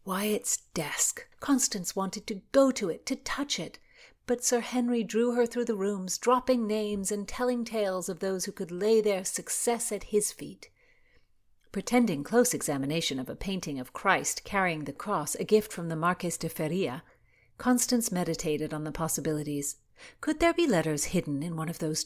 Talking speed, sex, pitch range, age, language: 180 wpm, female, 165-230 Hz, 50-69, English